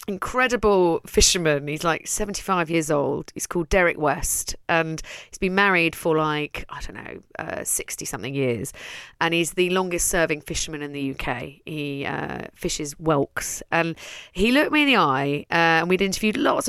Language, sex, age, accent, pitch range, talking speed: English, female, 30-49, British, 160-200 Hz, 185 wpm